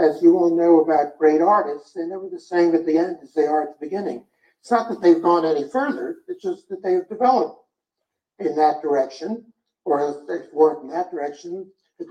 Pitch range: 155-230 Hz